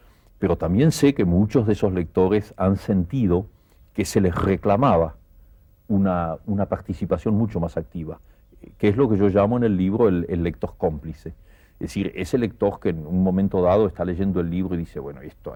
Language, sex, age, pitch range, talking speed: Spanish, male, 60-79, 85-105 Hz, 195 wpm